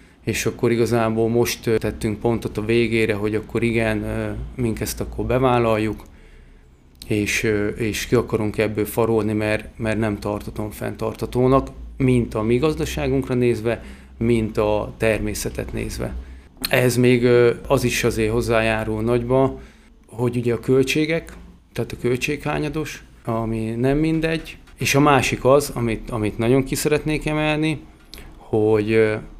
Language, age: Hungarian, 30-49